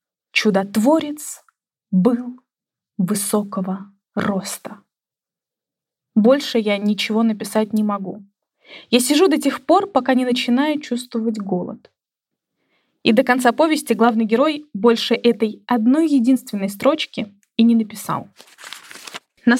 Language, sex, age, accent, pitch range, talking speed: Russian, female, 20-39, native, 220-285 Hz, 105 wpm